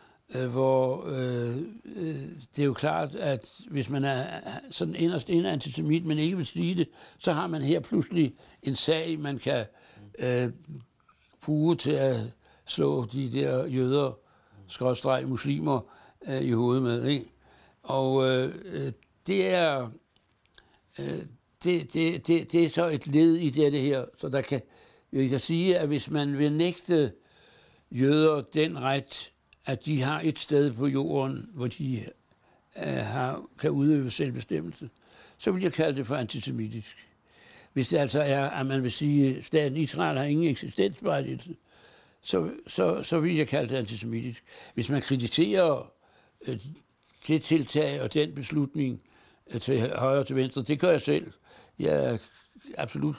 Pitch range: 130-155 Hz